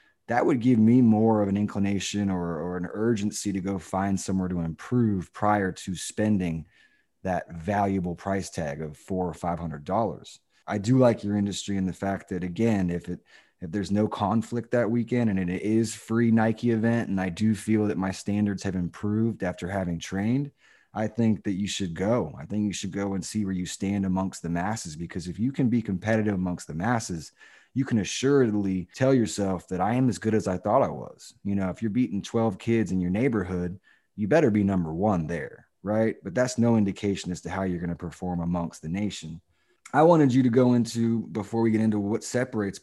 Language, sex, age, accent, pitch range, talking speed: English, male, 20-39, American, 95-115 Hz, 210 wpm